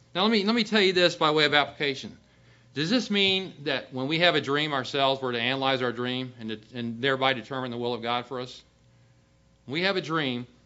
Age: 40-59